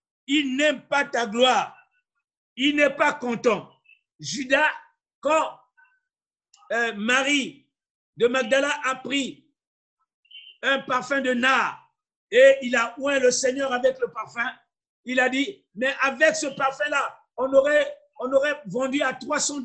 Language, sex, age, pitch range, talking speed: French, male, 50-69, 235-290 Hz, 135 wpm